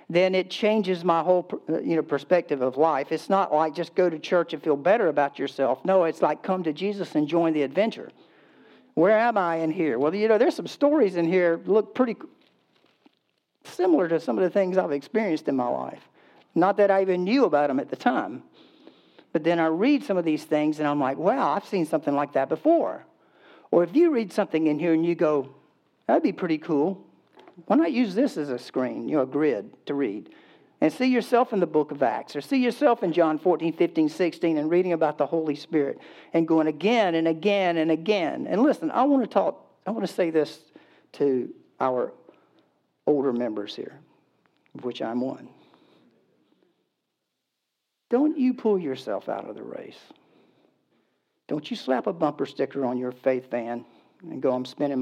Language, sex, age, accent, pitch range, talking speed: English, male, 60-79, American, 150-200 Hz, 200 wpm